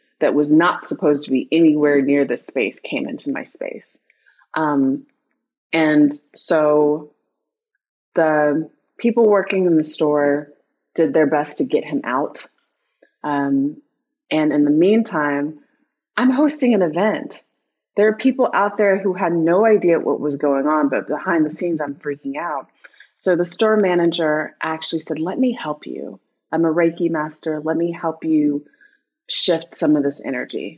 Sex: female